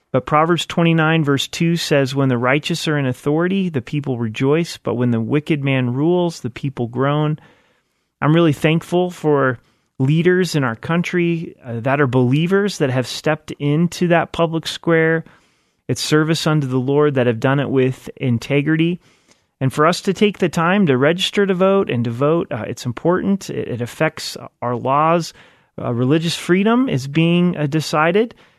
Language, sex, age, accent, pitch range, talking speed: English, male, 30-49, American, 135-170 Hz, 175 wpm